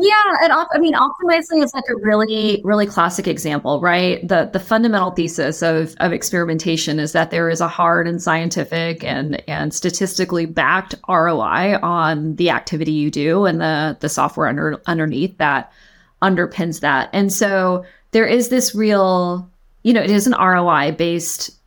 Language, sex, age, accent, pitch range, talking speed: English, female, 20-39, American, 165-225 Hz, 165 wpm